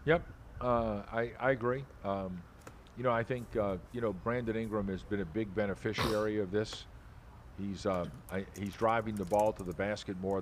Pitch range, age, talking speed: 95-115 Hz, 50-69, 190 wpm